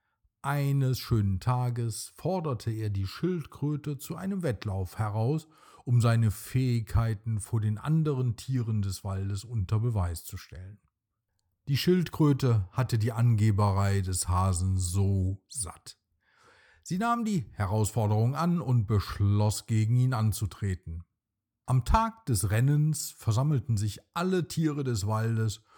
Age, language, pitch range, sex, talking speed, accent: 40-59, German, 100-145 Hz, male, 125 wpm, German